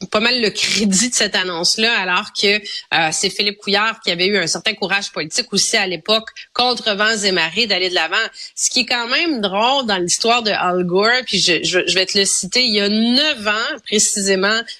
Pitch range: 190-230 Hz